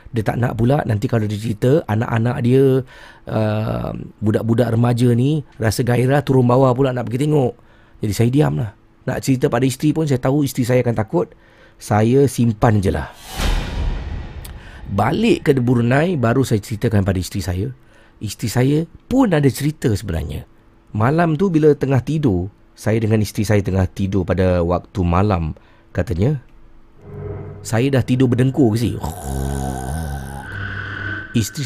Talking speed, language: 145 wpm, Malay